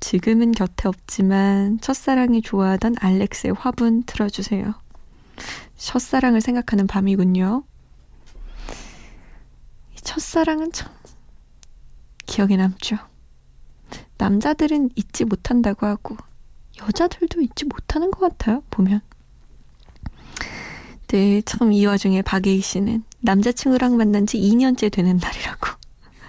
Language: Korean